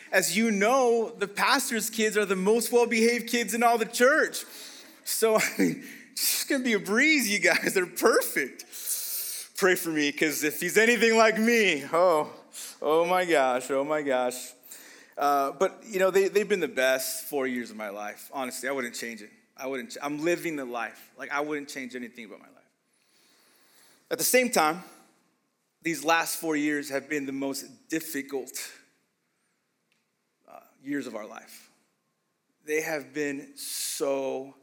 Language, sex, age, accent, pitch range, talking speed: English, male, 30-49, American, 135-205 Hz, 170 wpm